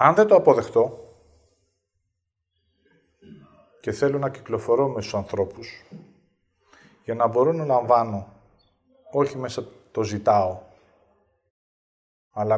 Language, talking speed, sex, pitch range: Greek, 100 wpm, male, 100-150 Hz